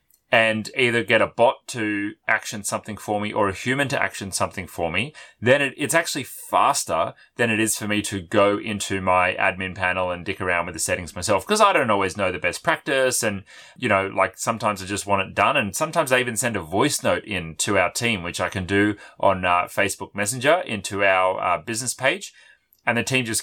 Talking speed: 225 wpm